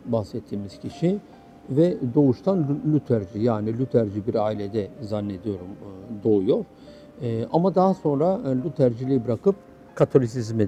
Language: Turkish